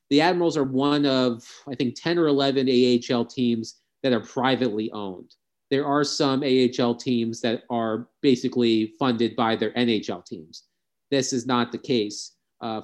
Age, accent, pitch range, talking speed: 30-49, American, 110-125 Hz, 165 wpm